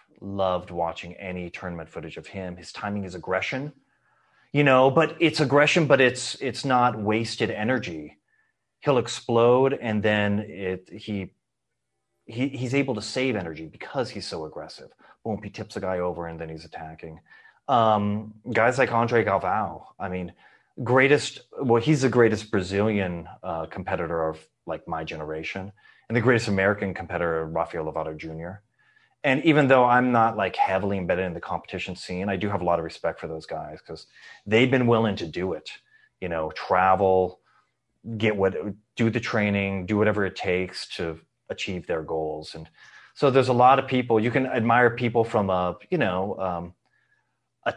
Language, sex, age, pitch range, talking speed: English, male, 30-49, 90-120 Hz, 170 wpm